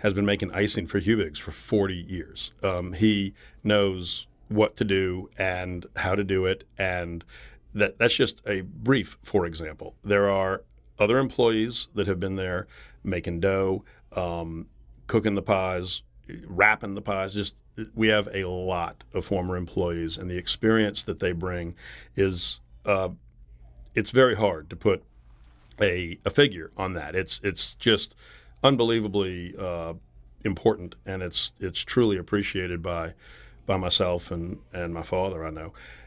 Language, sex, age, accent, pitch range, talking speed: English, male, 40-59, American, 90-105 Hz, 150 wpm